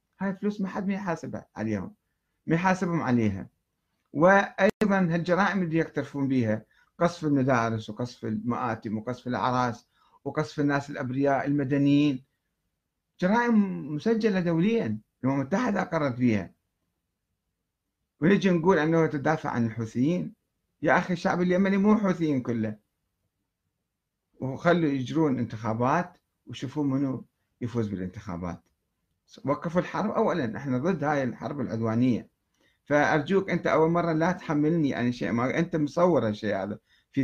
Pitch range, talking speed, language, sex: 110-170 Hz, 120 wpm, Arabic, male